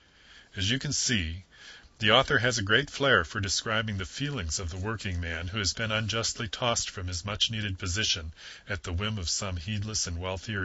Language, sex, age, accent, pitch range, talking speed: English, male, 40-59, American, 85-110 Hz, 195 wpm